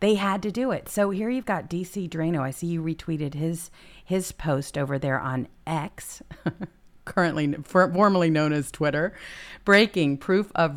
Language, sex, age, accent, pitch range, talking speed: English, female, 50-69, American, 140-180 Hz, 175 wpm